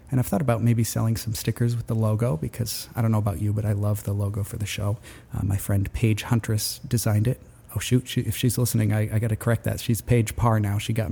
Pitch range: 110-125 Hz